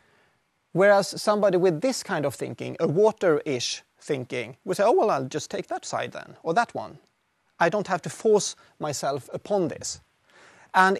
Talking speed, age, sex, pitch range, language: 175 wpm, 30-49, male, 145-195 Hz, English